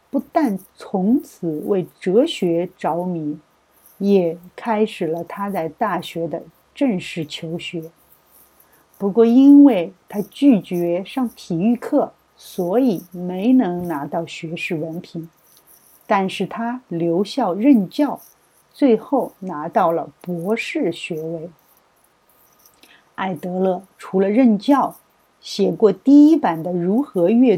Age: 50-69